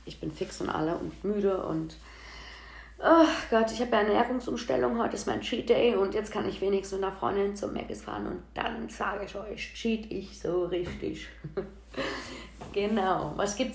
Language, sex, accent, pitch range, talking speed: German, female, German, 190-225 Hz, 180 wpm